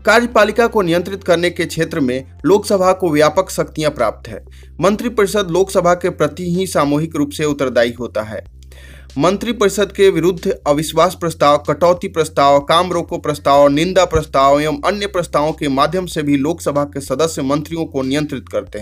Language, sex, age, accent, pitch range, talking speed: Hindi, male, 30-49, native, 140-185 Hz, 165 wpm